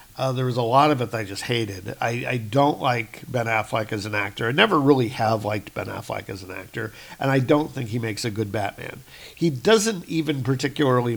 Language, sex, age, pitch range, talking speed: English, male, 50-69, 120-145 Hz, 230 wpm